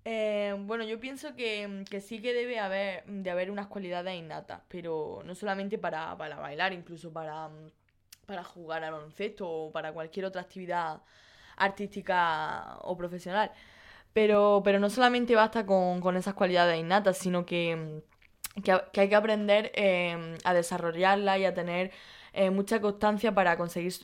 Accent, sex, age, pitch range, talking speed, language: Spanish, female, 10-29, 175-205 Hz, 155 wpm, Spanish